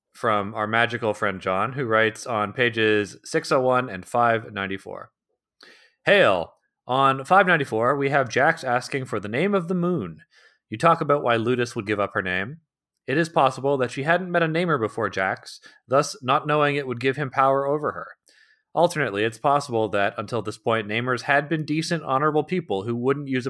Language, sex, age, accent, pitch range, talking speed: English, male, 30-49, American, 105-140 Hz, 185 wpm